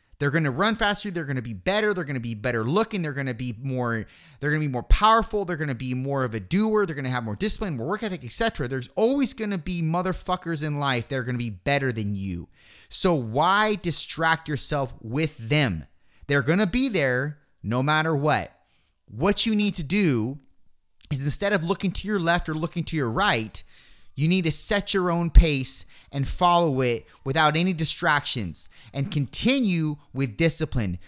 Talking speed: 190 wpm